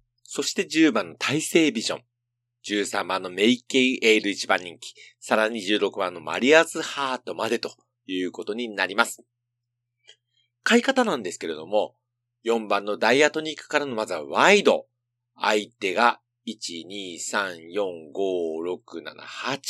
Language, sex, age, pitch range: Japanese, male, 40-59, 110-155 Hz